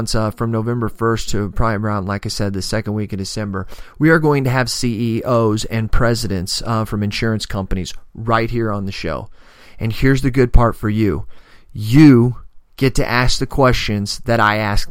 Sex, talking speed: male, 195 wpm